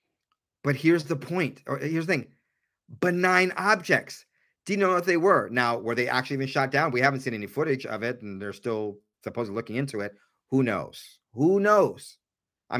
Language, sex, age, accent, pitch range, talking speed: English, male, 30-49, American, 110-140 Hz, 190 wpm